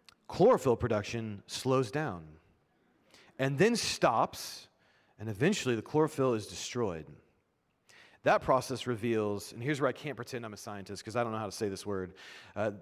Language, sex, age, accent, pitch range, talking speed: English, male, 30-49, American, 110-160 Hz, 165 wpm